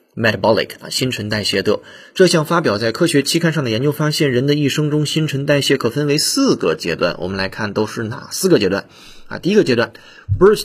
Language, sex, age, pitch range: Chinese, male, 30-49, 115-150 Hz